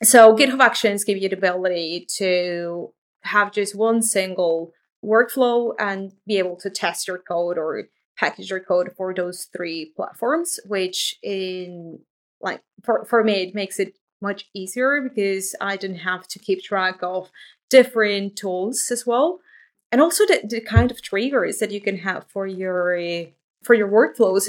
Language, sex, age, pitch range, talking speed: English, female, 30-49, 185-225 Hz, 165 wpm